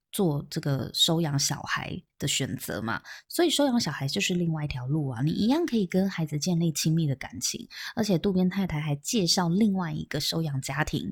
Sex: female